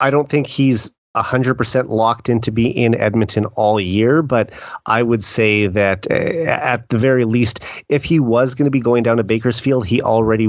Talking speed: 205 wpm